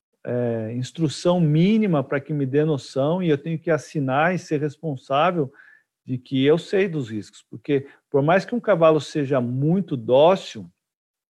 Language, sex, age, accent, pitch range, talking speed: Portuguese, male, 50-69, Brazilian, 125-155 Hz, 165 wpm